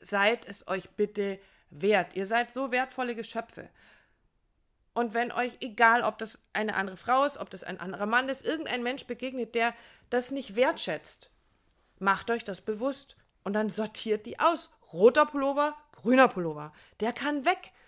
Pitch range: 215-260 Hz